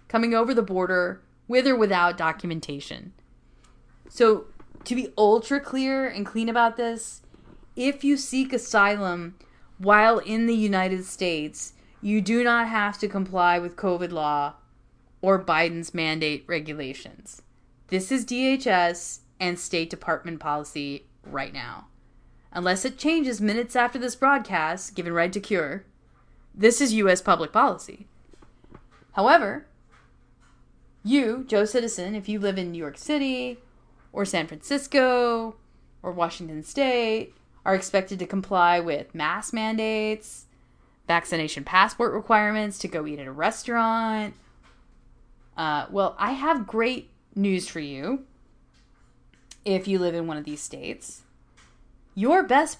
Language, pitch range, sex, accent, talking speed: English, 170-235 Hz, female, American, 130 wpm